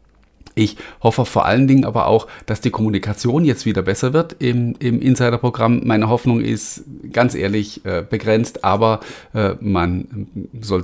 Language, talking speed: German, 155 wpm